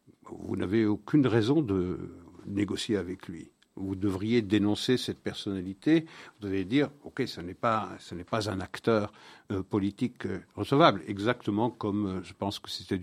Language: French